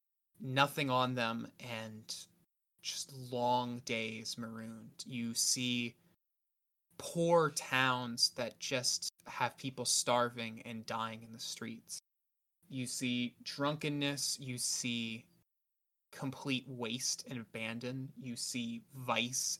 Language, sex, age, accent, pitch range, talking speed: English, male, 20-39, American, 120-140 Hz, 105 wpm